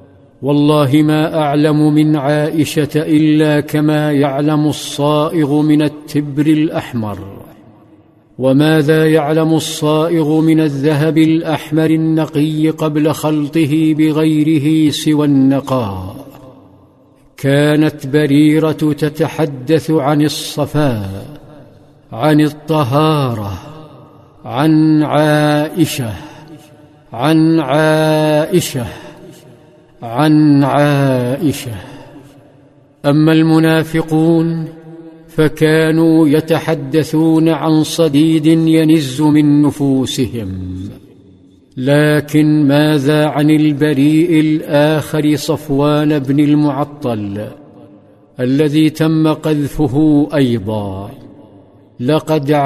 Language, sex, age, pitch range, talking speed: Arabic, male, 50-69, 145-155 Hz, 65 wpm